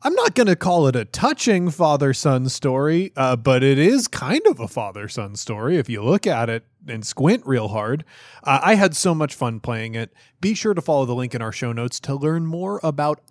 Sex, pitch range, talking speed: male, 120-190 Hz, 225 wpm